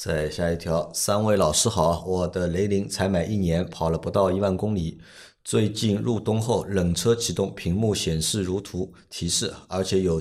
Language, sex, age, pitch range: Chinese, male, 50-69, 90-115 Hz